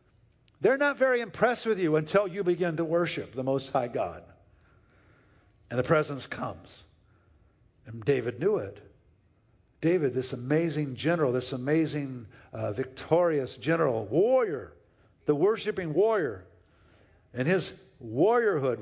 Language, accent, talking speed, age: English, American, 125 wpm, 50-69